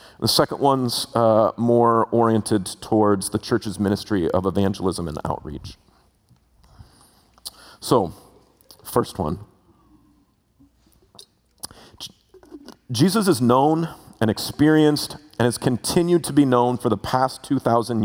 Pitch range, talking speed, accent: 115-165 Hz, 105 wpm, American